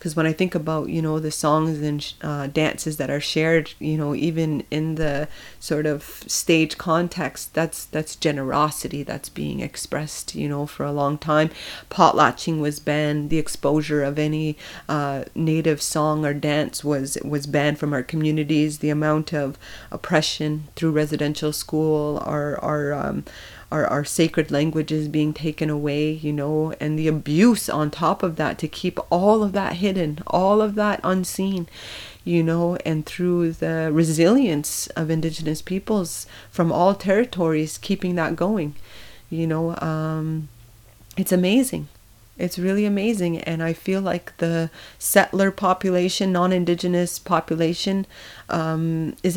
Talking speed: 150 wpm